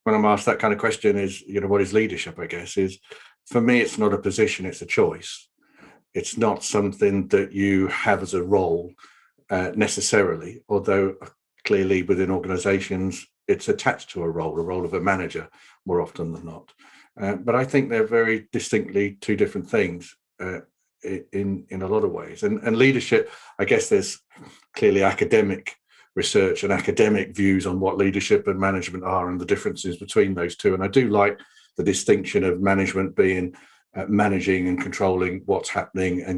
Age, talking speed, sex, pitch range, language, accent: 50-69, 185 wpm, male, 95-110 Hz, English, British